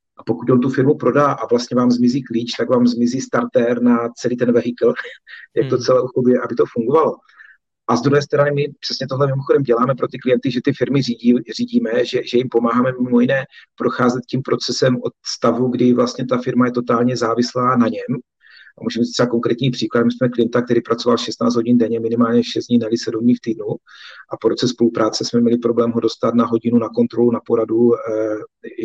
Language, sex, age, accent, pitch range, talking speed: Czech, male, 40-59, native, 115-130 Hz, 205 wpm